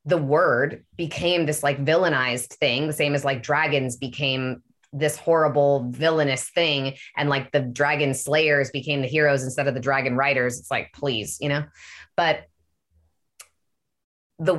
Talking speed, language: 150 wpm, English